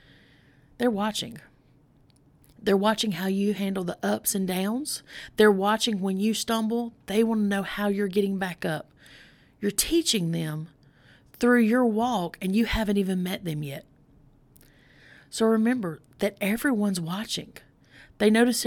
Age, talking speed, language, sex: 30-49, 145 wpm, English, female